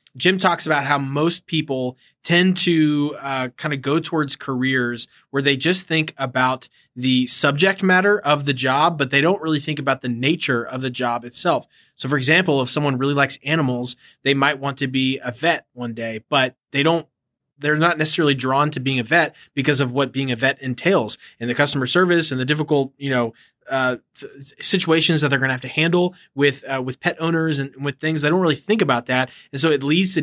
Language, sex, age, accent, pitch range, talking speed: English, male, 20-39, American, 130-155 Hz, 215 wpm